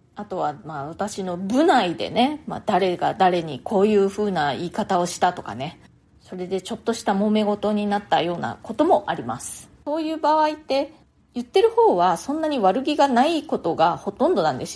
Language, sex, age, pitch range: Japanese, female, 20-39, 180-245 Hz